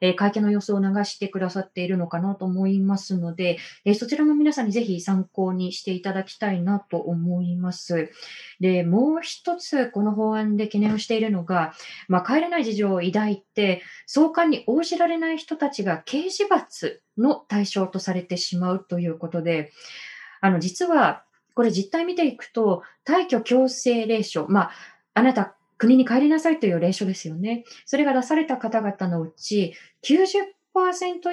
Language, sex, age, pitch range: Japanese, female, 20-39, 185-260 Hz